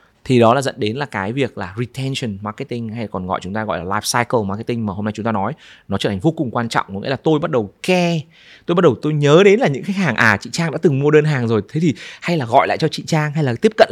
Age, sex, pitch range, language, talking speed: 20-39, male, 110-165 Hz, Vietnamese, 315 wpm